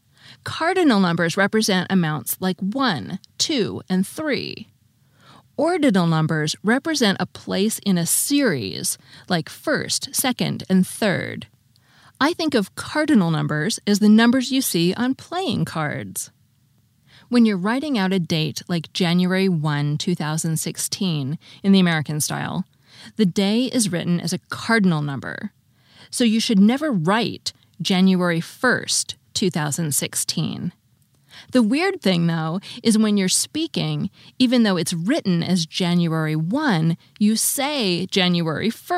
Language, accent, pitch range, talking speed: English, American, 160-225 Hz, 130 wpm